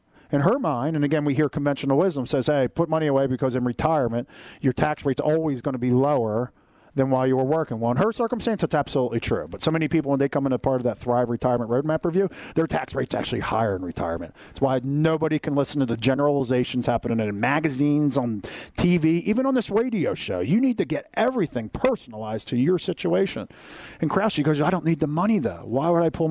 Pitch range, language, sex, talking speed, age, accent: 120-160 Hz, English, male, 225 wpm, 50-69, American